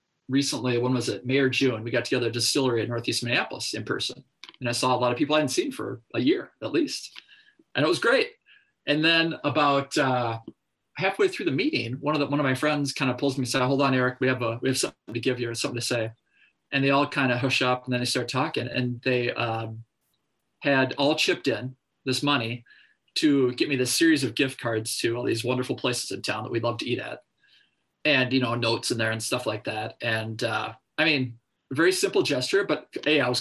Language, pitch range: English, 120-145 Hz